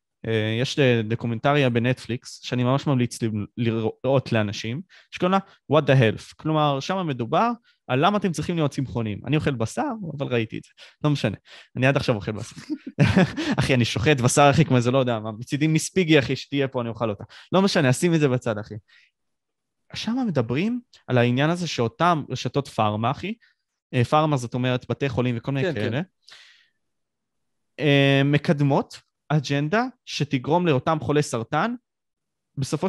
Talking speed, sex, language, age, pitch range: 160 wpm, male, Hebrew, 20-39, 120-160 Hz